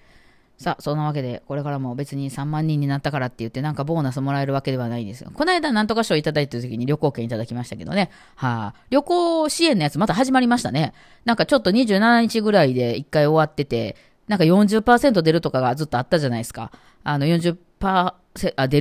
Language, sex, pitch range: Japanese, female, 135-195 Hz